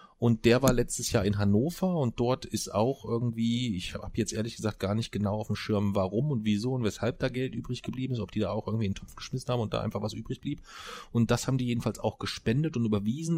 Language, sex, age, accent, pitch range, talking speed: German, male, 40-59, German, 105-125 Hz, 260 wpm